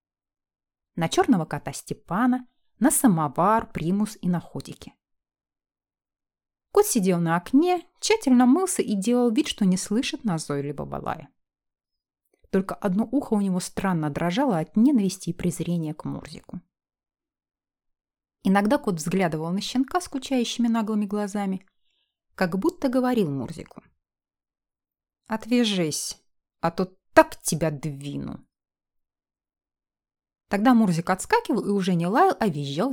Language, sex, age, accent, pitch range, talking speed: Russian, female, 30-49, native, 165-255 Hz, 120 wpm